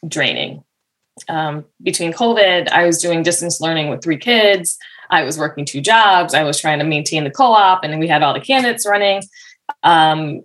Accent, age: American, 20-39